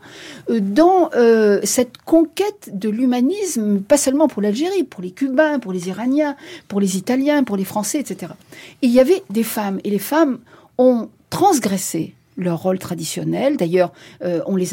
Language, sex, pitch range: French, female, 185-280 Hz